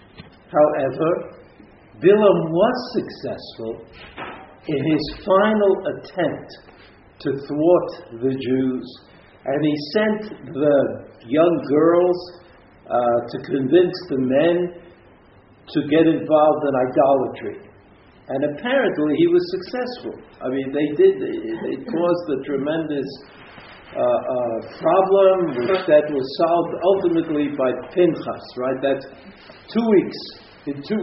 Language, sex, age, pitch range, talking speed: English, male, 50-69, 135-190 Hz, 115 wpm